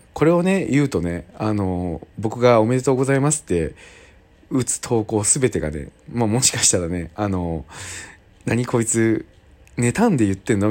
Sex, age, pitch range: male, 40-59, 90-125 Hz